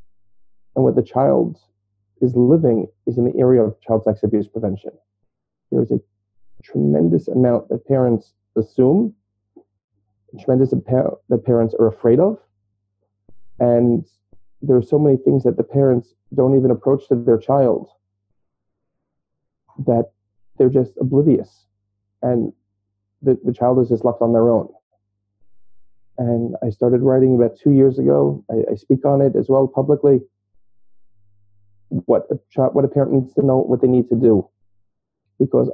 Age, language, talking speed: 40-59, English, 155 wpm